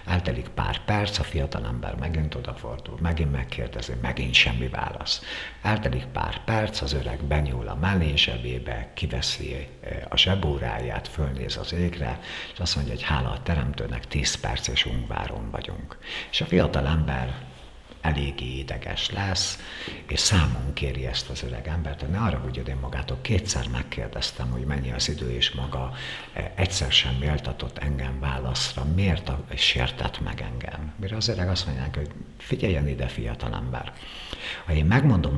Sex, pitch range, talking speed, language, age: male, 65-90 Hz, 155 wpm, Hungarian, 60-79